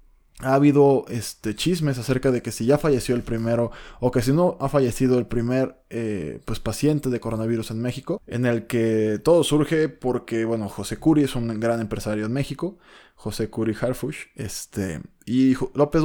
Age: 20-39